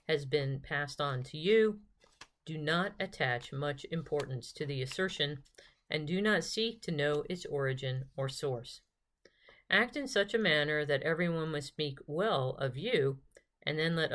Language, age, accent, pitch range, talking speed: English, 40-59, American, 135-165 Hz, 165 wpm